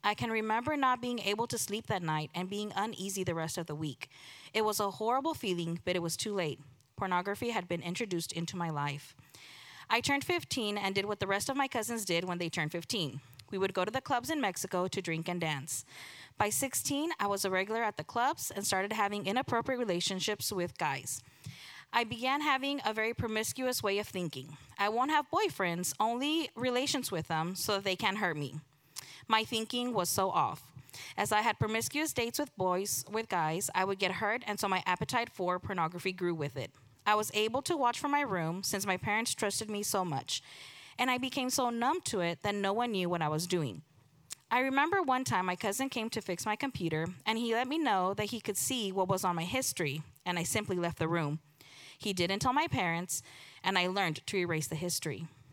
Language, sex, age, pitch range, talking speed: English, female, 20-39, 165-225 Hz, 215 wpm